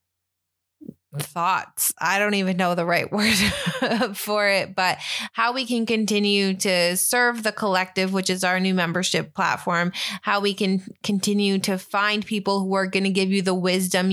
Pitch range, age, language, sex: 180-200 Hz, 20-39, English, female